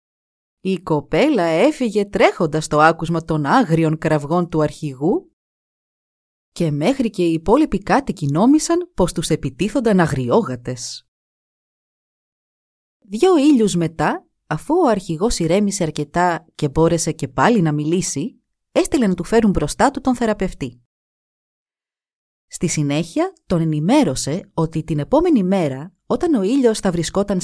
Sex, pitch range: female, 150-225 Hz